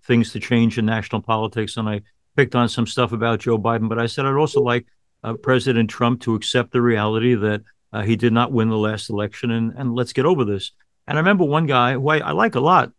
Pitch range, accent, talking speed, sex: 115-135 Hz, American, 250 wpm, male